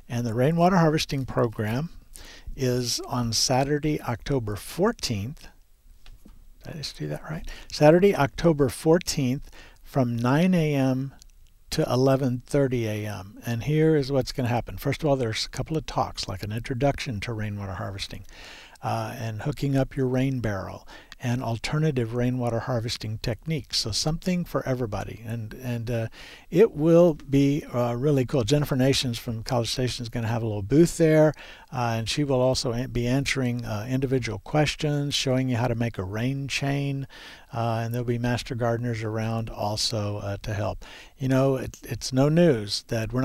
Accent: American